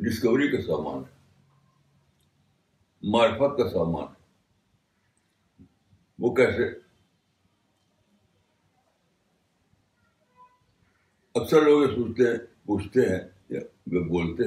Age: 60-79